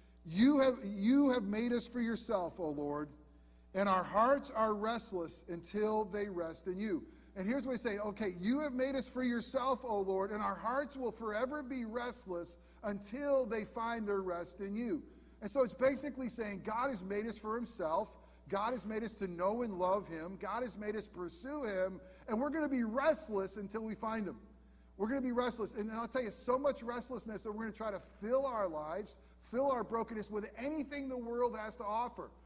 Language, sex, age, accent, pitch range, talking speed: English, male, 50-69, American, 180-235 Hz, 215 wpm